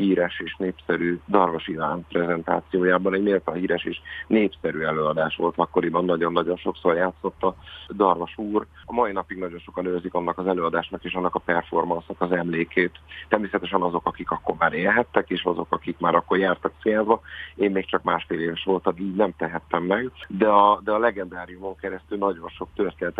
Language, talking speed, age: Hungarian, 170 wpm, 30-49